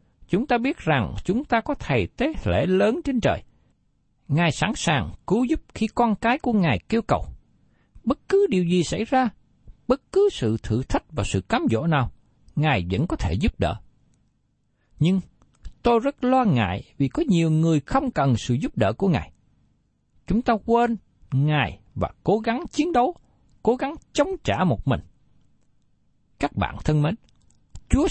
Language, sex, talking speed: Vietnamese, male, 175 wpm